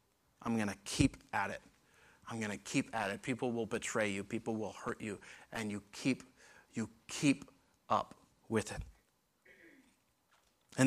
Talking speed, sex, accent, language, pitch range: 160 wpm, male, American, English, 115-155 Hz